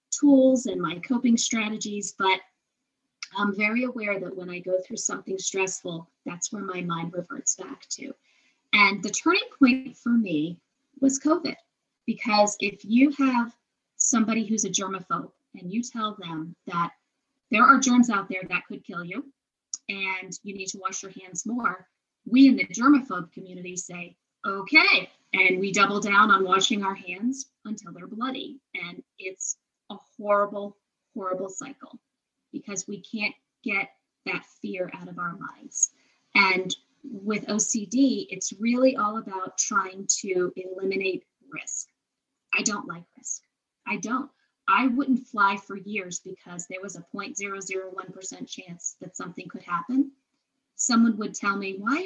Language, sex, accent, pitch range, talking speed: English, female, American, 190-260 Hz, 150 wpm